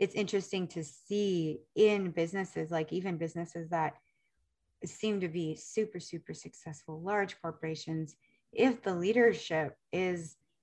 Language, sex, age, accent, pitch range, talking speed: English, female, 30-49, American, 165-230 Hz, 125 wpm